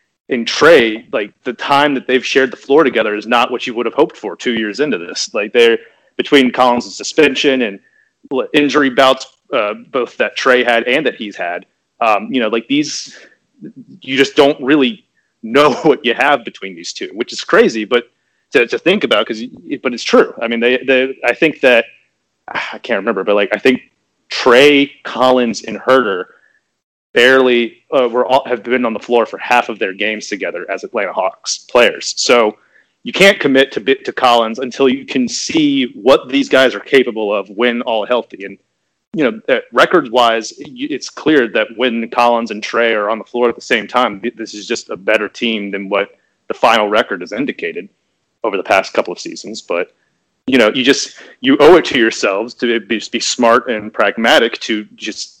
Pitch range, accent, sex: 115-140 Hz, American, male